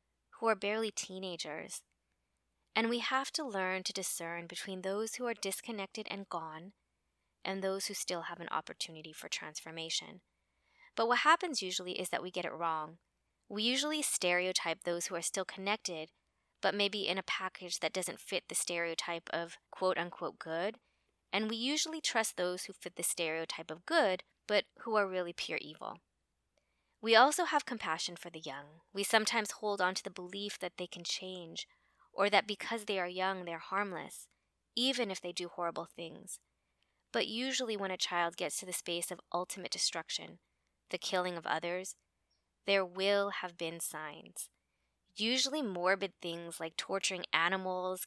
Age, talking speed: 20-39, 165 wpm